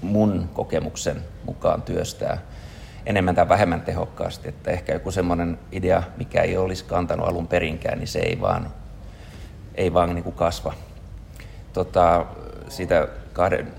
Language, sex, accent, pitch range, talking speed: Finnish, male, native, 90-105 Hz, 135 wpm